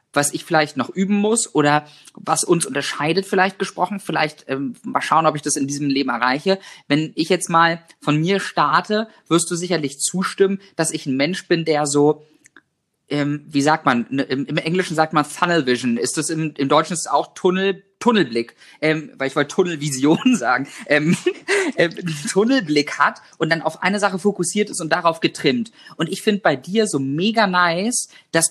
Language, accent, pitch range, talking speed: German, German, 155-200 Hz, 190 wpm